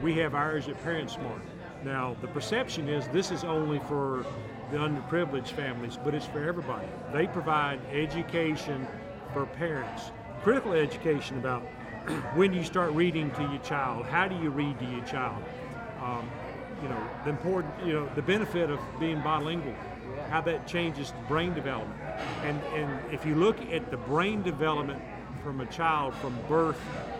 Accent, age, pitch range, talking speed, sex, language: American, 50-69, 135-165 Hz, 165 wpm, male, English